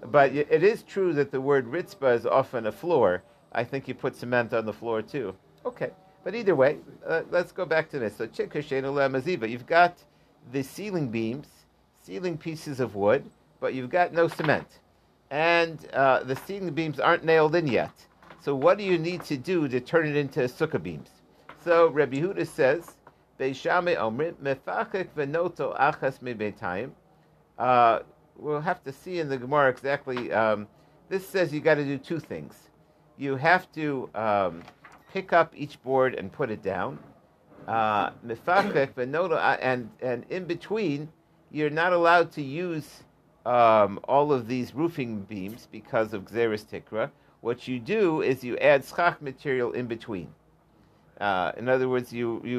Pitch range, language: 125-170 Hz, English